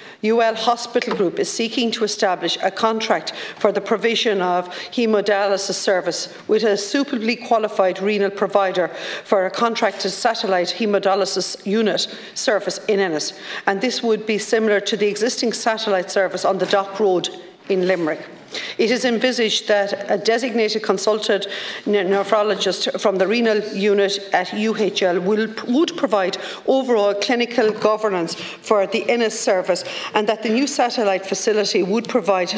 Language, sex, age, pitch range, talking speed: English, female, 50-69, 195-225 Hz, 145 wpm